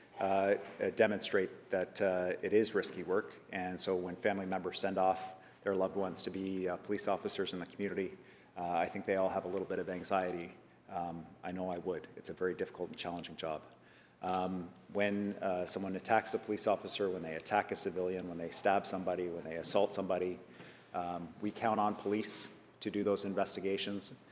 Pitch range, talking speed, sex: 95-105 Hz, 195 wpm, male